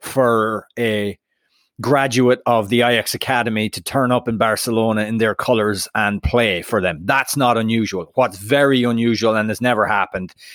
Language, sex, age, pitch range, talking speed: English, male, 30-49, 110-130 Hz, 165 wpm